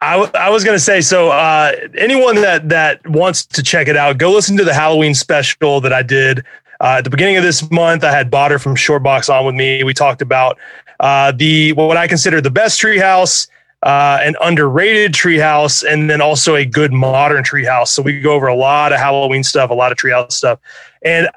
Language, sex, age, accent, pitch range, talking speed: English, male, 30-49, American, 145-185 Hz, 235 wpm